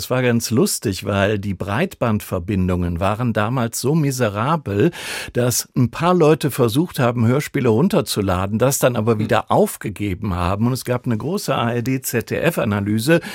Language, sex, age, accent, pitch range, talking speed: German, male, 50-69, German, 100-130 Hz, 140 wpm